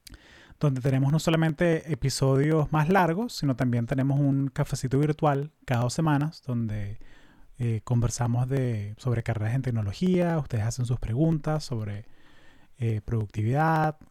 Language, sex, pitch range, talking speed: Spanish, male, 120-155 Hz, 130 wpm